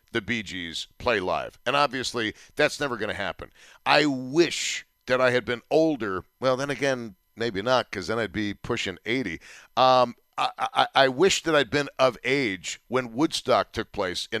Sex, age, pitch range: male, 50-69, 115-140 Hz